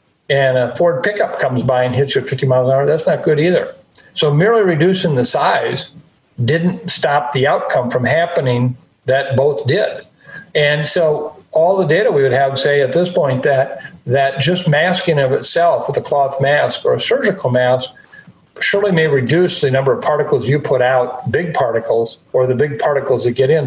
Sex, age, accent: male, 50-69, American